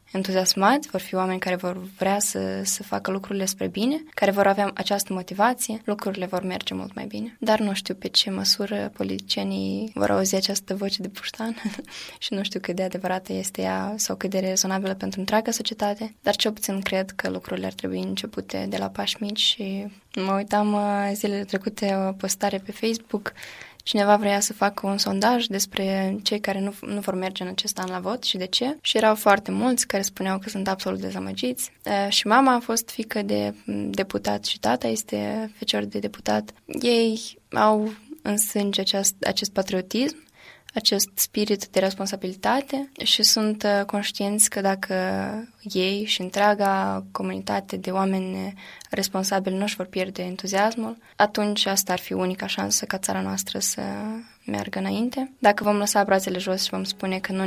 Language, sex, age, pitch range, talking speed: Romanian, female, 10-29, 185-210 Hz, 175 wpm